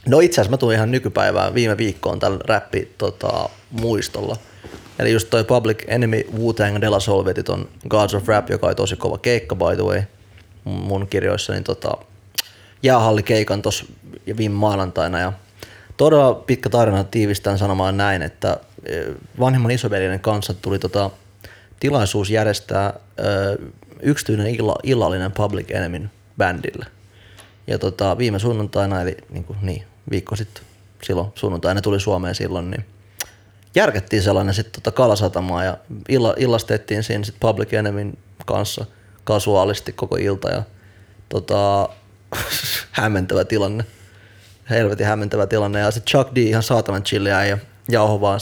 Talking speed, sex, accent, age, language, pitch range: 130 wpm, male, native, 20-39, Finnish, 100-110 Hz